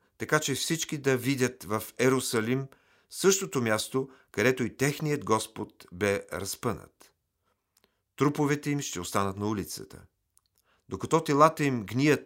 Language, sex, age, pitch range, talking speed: Bulgarian, male, 50-69, 100-140 Hz, 120 wpm